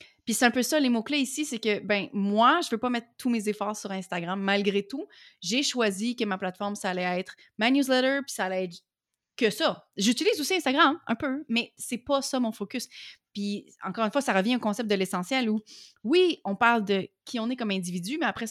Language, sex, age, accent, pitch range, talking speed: French, female, 30-49, Canadian, 200-260 Hz, 235 wpm